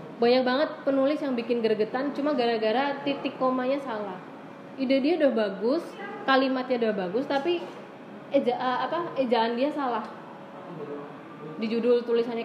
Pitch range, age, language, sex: 220-280 Hz, 20-39, Indonesian, female